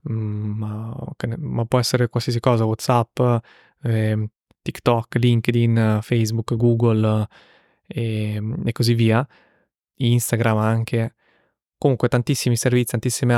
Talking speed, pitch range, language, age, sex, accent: 105 wpm, 115-130 Hz, Italian, 20-39, male, native